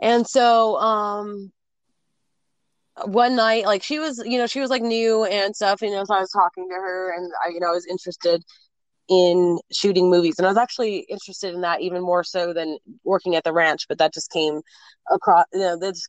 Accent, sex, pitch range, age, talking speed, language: American, female, 170-200 Hz, 20-39, 215 wpm, English